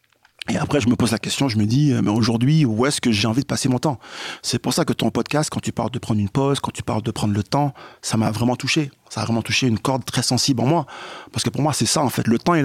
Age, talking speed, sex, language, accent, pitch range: 40-59, 315 wpm, male, French, French, 110-140 Hz